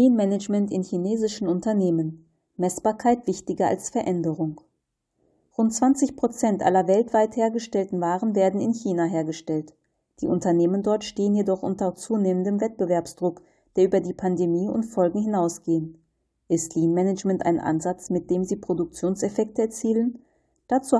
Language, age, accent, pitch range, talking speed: German, 40-59, German, 175-215 Hz, 130 wpm